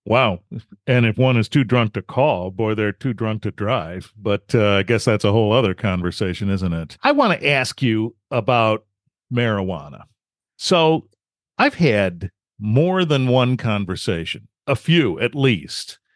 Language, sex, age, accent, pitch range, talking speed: English, male, 50-69, American, 110-150 Hz, 165 wpm